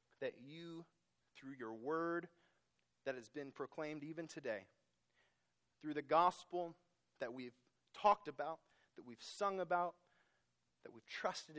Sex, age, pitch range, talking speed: male, 30-49, 130-185 Hz, 130 wpm